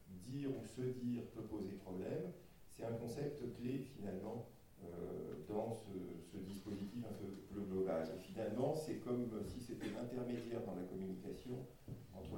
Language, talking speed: French, 150 wpm